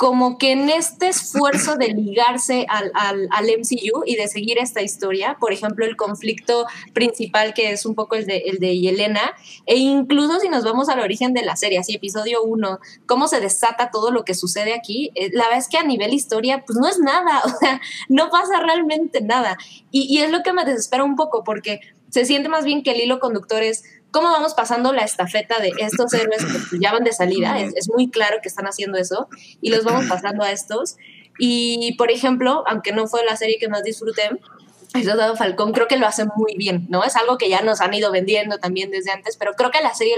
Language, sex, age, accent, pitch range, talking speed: Spanish, female, 20-39, Mexican, 205-250 Hz, 225 wpm